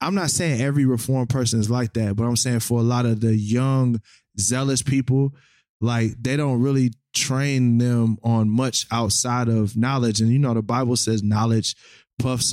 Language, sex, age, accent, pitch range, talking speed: English, male, 20-39, American, 110-130 Hz, 185 wpm